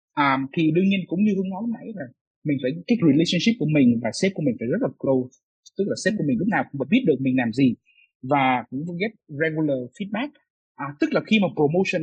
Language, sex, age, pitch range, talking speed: Vietnamese, male, 20-39, 145-215 Hz, 245 wpm